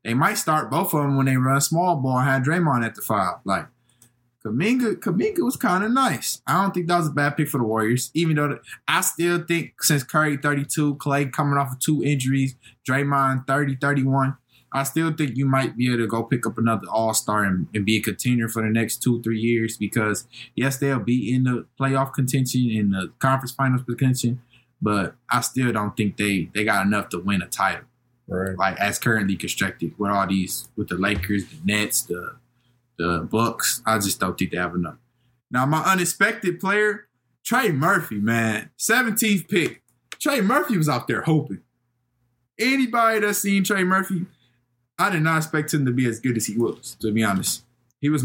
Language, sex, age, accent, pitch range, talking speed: English, male, 20-39, American, 115-150 Hz, 200 wpm